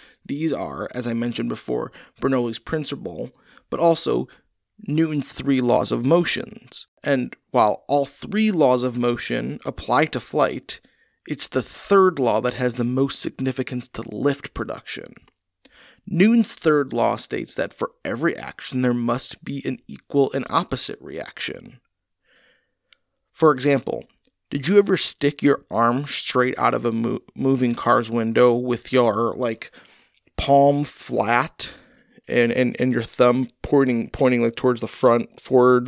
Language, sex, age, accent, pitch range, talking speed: English, male, 30-49, American, 125-140 Hz, 140 wpm